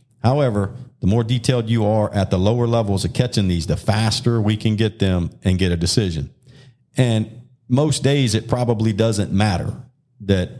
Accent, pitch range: American, 95-125 Hz